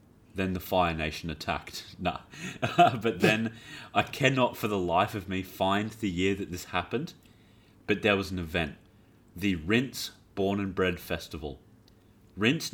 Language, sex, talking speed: English, male, 155 wpm